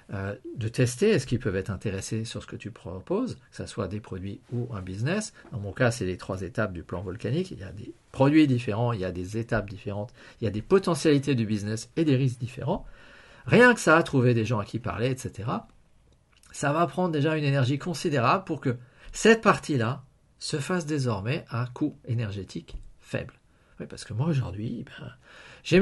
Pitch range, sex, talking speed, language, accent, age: 110-155 Hz, male, 210 wpm, French, French, 50-69